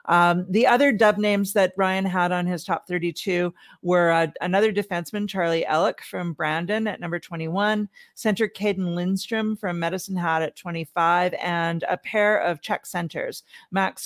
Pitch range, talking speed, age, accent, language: 160-195 Hz, 160 wpm, 40-59, American, English